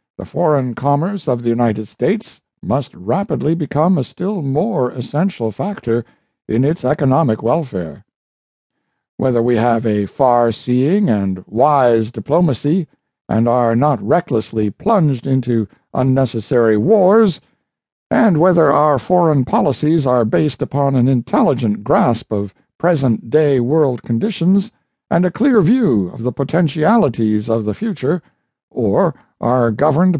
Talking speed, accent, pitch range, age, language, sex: 125 wpm, American, 120-185 Hz, 60-79, English, male